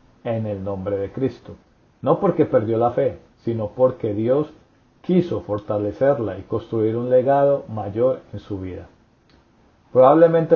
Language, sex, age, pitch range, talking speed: English, male, 40-59, 110-135 Hz, 135 wpm